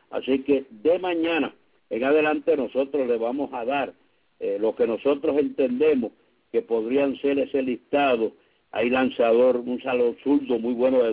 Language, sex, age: English, male, 60-79